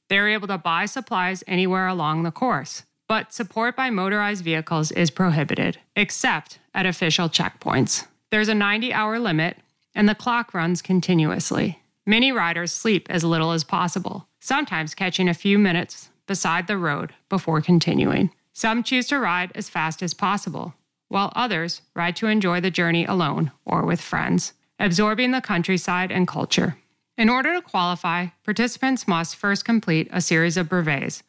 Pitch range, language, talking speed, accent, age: 170-215 Hz, English, 155 wpm, American, 30-49